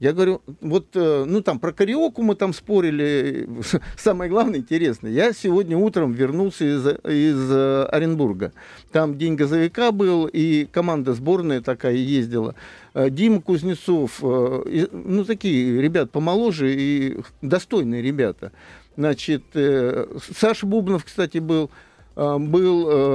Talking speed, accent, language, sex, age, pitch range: 115 wpm, native, Russian, male, 50-69, 135-195 Hz